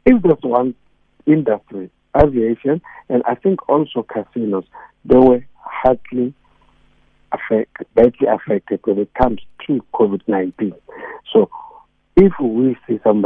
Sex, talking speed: male, 120 wpm